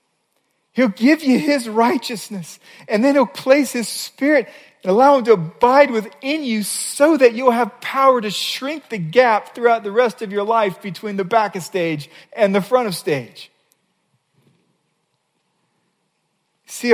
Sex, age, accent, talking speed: male, 40-59, American, 155 wpm